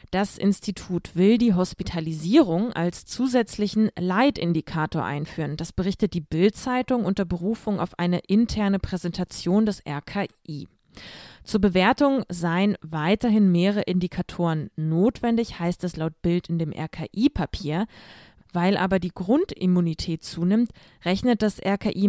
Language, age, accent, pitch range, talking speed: German, 20-39, German, 170-210 Hz, 115 wpm